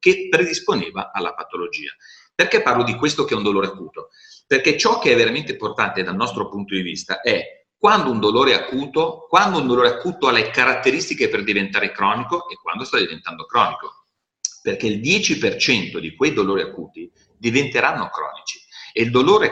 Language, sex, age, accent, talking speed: Italian, male, 40-59, native, 175 wpm